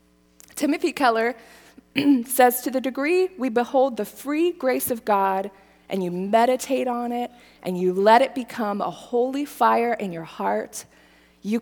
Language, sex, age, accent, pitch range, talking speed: English, female, 20-39, American, 165-230 Hz, 155 wpm